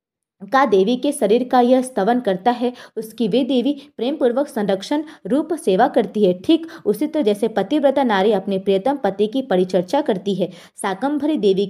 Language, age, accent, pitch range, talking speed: Hindi, 20-39, native, 195-255 Hz, 180 wpm